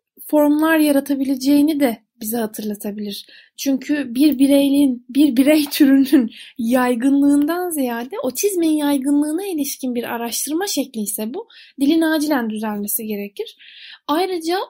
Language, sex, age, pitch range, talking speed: Turkish, female, 10-29, 240-325 Hz, 105 wpm